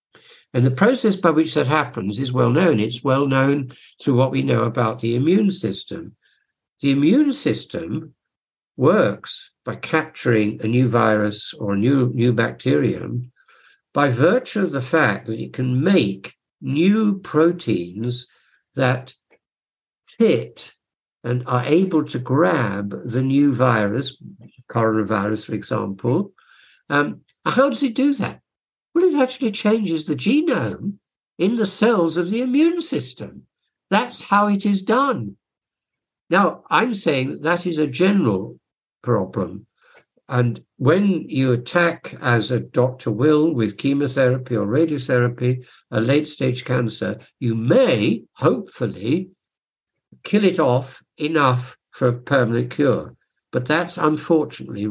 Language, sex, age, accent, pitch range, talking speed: English, male, 60-79, British, 120-175 Hz, 130 wpm